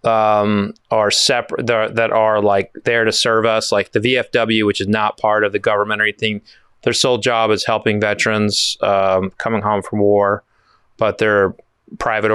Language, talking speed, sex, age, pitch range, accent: English, 180 wpm, male, 30-49, 105-115 Hz, American